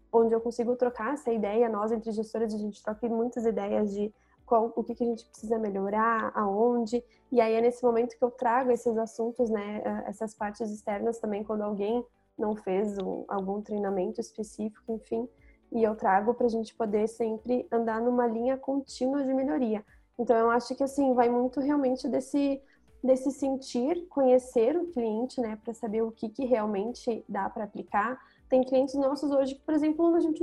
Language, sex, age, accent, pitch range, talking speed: Portuguese, female, 20-39, Brazilian, 225-270 Hz, 185 wpm